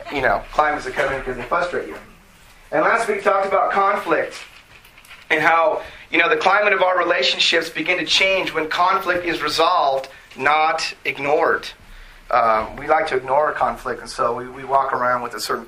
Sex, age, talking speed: male, 30-49, 190 wpm